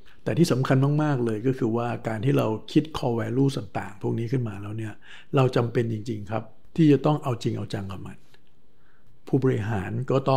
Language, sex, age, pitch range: Thai, male, 60-79, 110-135 Hz